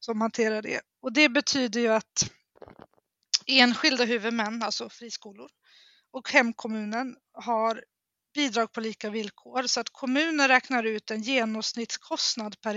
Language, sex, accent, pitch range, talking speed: Swedish, female, native, 220-265 Hz, 125 wpm